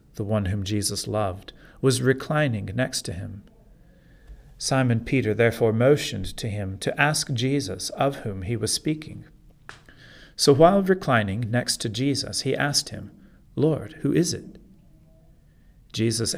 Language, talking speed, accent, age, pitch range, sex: English, 140 wpm, American, 40-59, 110-135 Hz, male